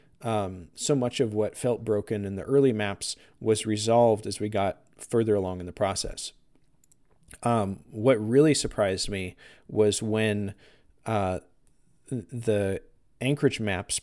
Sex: male